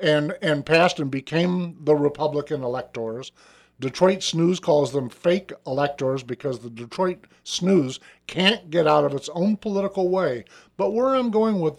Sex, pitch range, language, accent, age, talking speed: male, 140-195 Hz, English, American, 50-69, 160 wpm